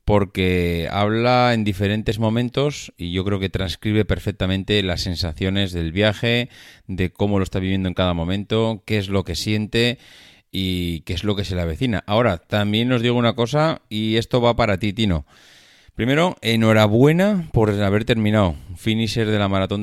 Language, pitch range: Spanish, 90-110 Hz